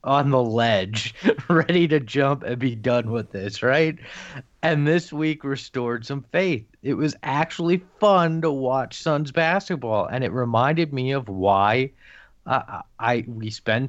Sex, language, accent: male, English, American